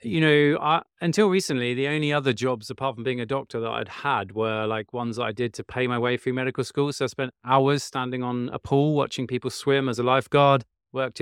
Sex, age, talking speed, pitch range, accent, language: male, 30-49, 230 wpm, 115-140 Hz, British, English